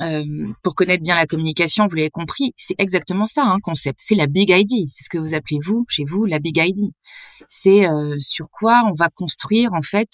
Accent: French